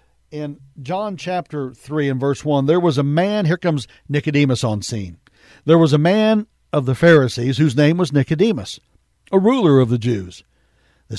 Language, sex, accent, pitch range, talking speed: English, male, American, 115-165 Hz, 175 wpm